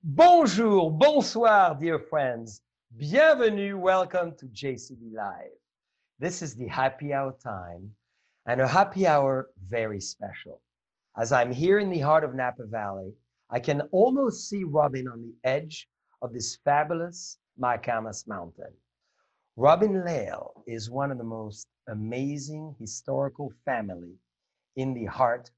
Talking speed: 130 wpm